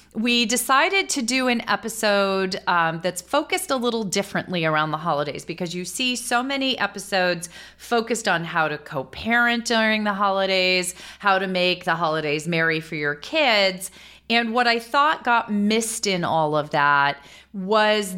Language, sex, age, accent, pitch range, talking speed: English, female, 30-49, American, 170-225 Hz, 160 wpm